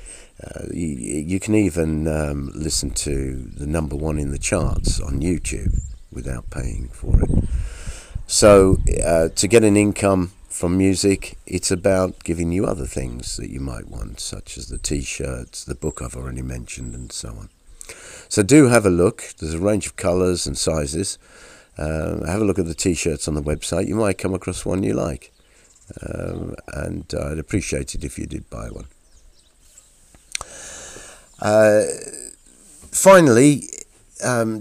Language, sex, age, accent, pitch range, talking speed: English, male, 50-69, British, 75-95 Hz, 160 wpm